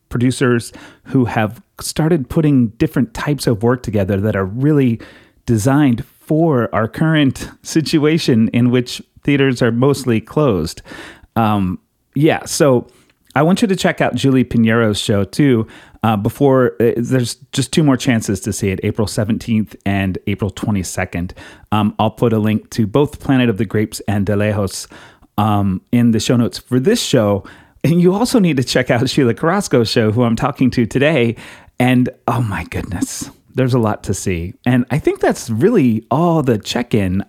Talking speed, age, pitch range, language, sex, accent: 170 wpm, 30-49, 105-135 Hz, English, male, American